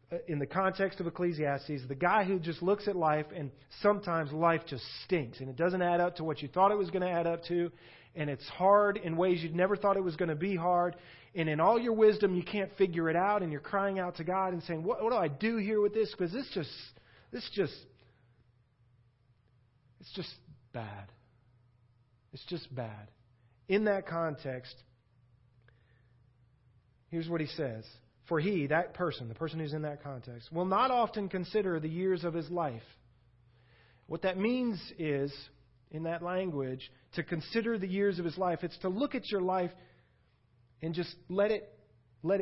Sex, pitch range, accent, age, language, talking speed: male, 125-185 Hz, American, 40-59, English, 190 wpm